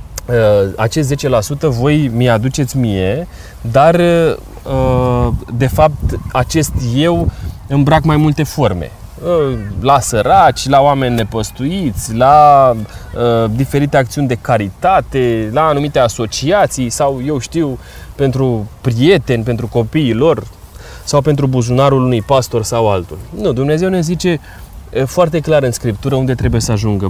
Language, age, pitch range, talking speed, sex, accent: Romanian, 20-39, 110-150 Hz, 120 wpm, male, native